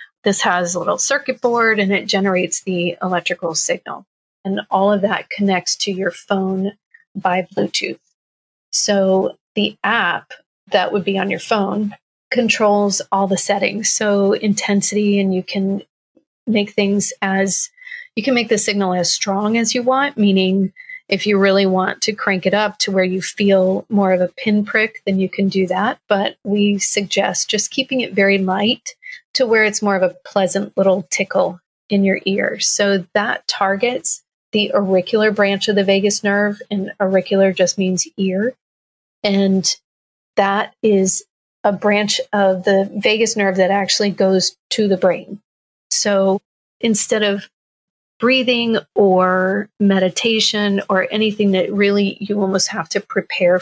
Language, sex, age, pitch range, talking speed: English, female, 30-49, 190-215 Hz, 155 wpm